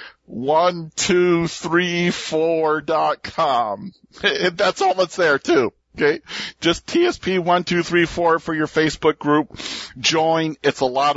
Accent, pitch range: American, 145-185 Hz